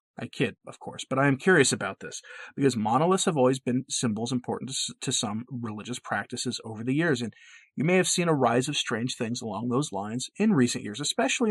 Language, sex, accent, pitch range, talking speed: English, male, American, 120-175 Hz, 215 wpm